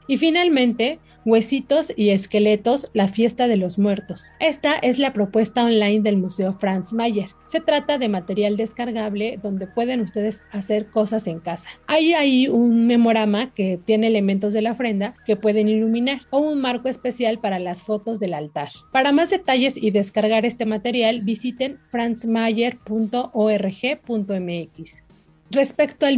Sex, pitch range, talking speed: female, 200-245 Hz, 145 wpm